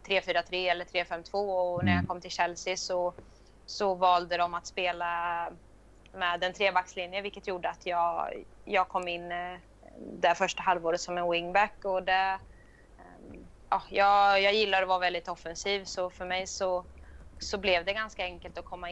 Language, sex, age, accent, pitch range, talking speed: Swedish, female, 20-39, native, 170-185 Hz, 165 wpm